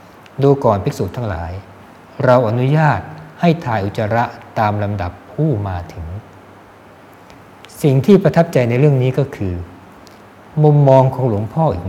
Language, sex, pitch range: Thai, male, 95-125 Hz